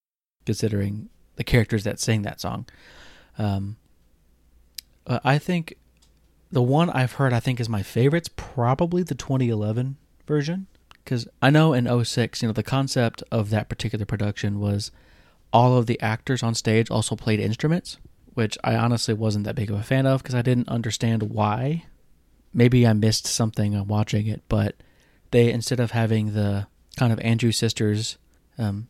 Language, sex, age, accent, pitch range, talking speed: English, male, 30-49, American, 110-130 Hz, 165 wpm